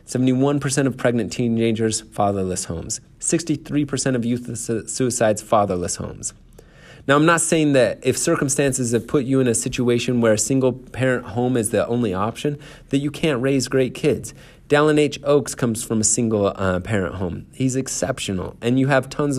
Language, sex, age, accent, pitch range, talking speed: English, male, 30-49, American, 110-140 Hz, 165 wpm